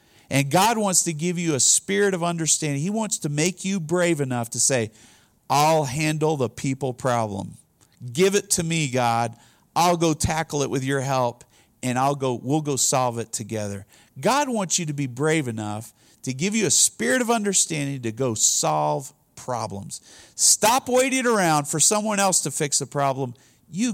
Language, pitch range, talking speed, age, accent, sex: English, 125-180 Hz, 185 wpm, 50-69, American, male